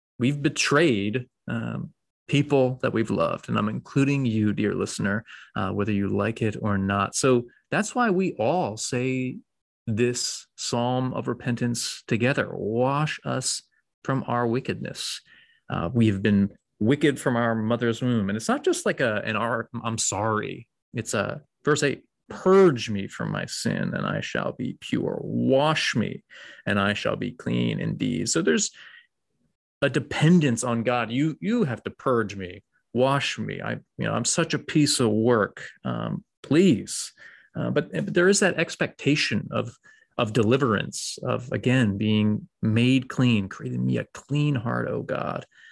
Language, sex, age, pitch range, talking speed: English, male, 30-49, 110-145 Hz, 160 wpm